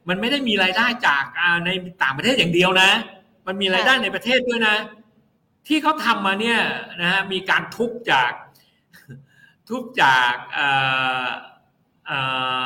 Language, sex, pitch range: Thai, male, 150-225 Hz